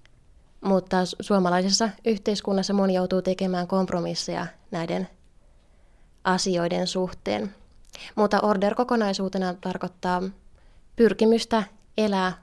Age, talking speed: 20-39, 75 wpm